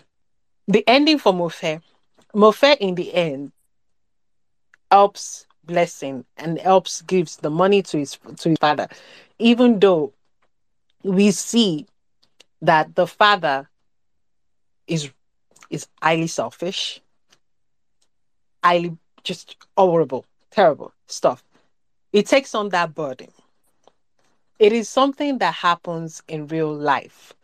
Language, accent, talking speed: English, Nigerian, 105 wpm